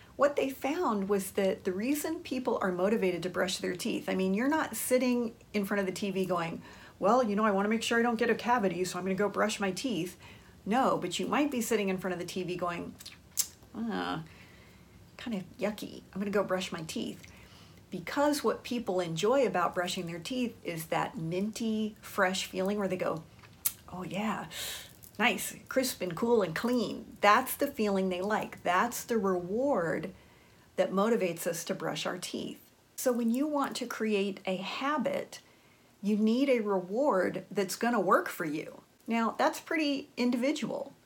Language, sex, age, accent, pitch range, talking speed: English, female, 40-59, American, 185-245 Hz, 190 wpm